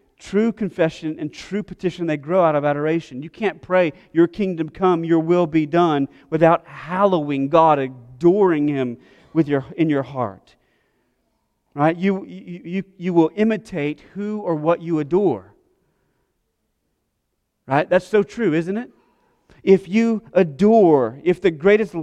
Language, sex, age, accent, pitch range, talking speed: English, male, 40-59, American, 155-190 Hz, 145 wpm